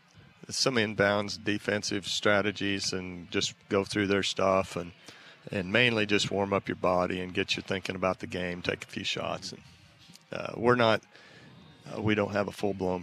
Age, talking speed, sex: 40-59, 180 wpm, male